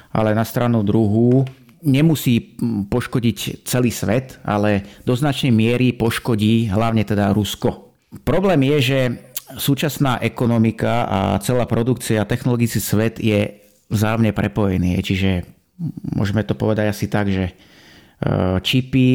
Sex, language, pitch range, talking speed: male, Slovak, 105-125 Hz, 115 wpm